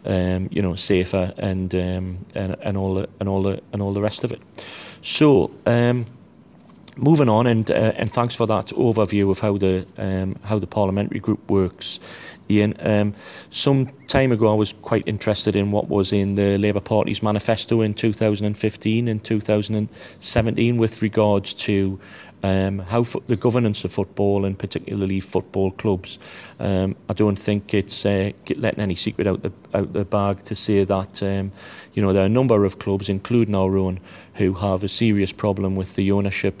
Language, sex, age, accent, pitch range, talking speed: English, male, 30-49, British, 95-110 Hz, 175 wpm